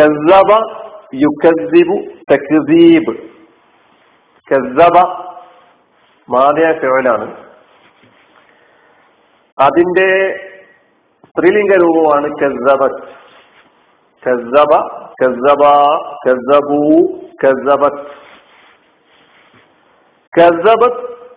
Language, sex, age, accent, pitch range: Malayalam, male, 50-69, native, 150-225 Hz